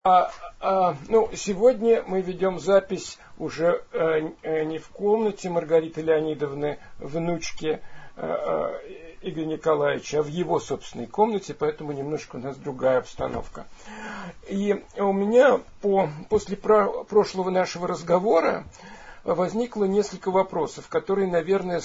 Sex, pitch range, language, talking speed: male, 165-210 Hz, Russian, 110 wpm